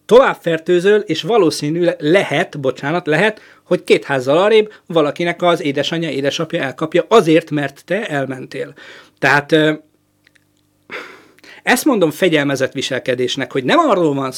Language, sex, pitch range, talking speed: Hungarian, male, 135-180 Hz, 115 wpm